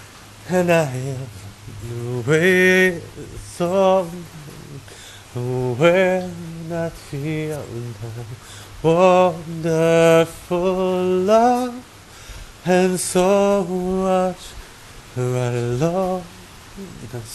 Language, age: English, 30-49